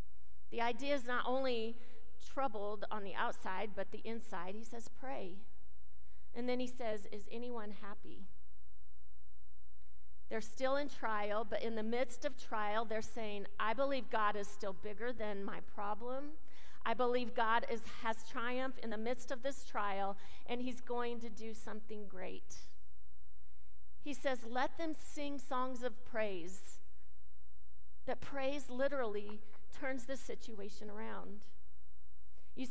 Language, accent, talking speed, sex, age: English, American, 140 wpm, female, 40-59